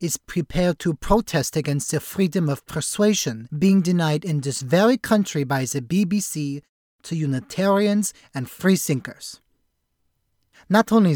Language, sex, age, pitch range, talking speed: English, male, 30-49, 140-185 Hz, 130 wpm